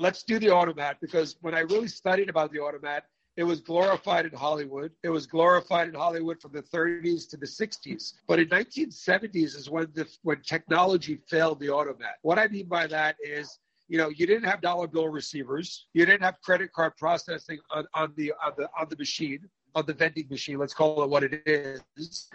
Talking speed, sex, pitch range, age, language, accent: 205 wpm, male, 155-190 Hz, 50-69, English, American